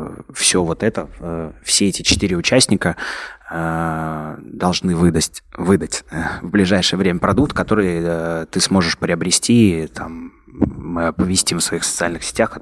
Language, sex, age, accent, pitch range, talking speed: Russian, male, 20-39, native, 80-100 Hz, 120 wpm